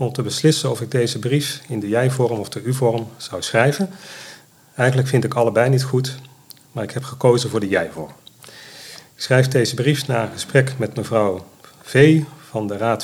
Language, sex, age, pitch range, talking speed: Dutch, male, 40-59, 115-135 Hz, 190 wpm